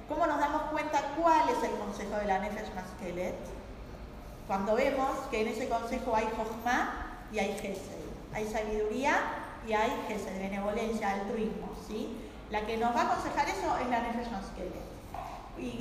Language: Spanish